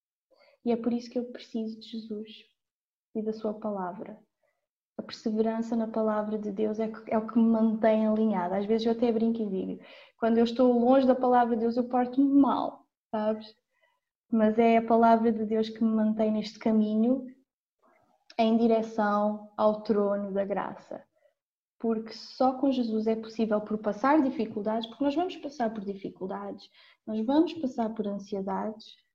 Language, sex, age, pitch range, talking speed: Portuguese, female, 20-39, 215-245 Hz, 165 wpm